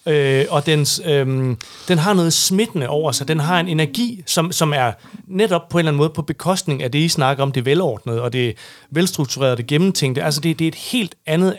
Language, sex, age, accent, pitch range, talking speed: Danish, male, 30-49, native, 135-170 Hz, 230 wpm